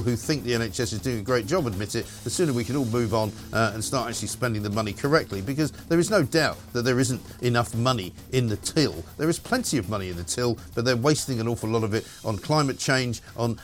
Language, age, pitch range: English, 50-69, 105-130 Hz